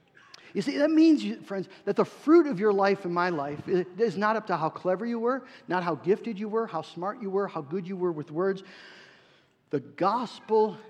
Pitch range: 175-255 Hz